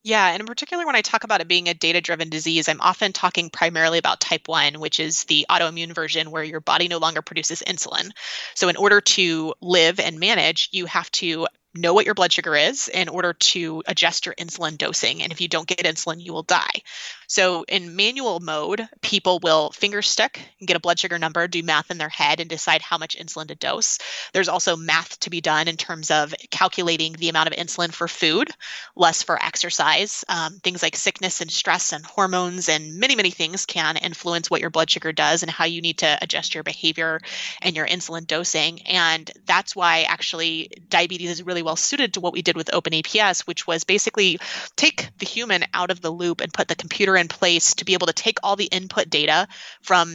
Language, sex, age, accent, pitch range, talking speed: English, female, 20-39, American, 165-190 Hz, 215 wpm